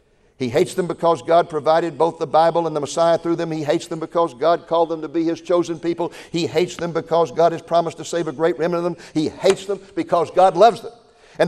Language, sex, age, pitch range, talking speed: English, male, 60-79, 170-215 Hz, 250 wpm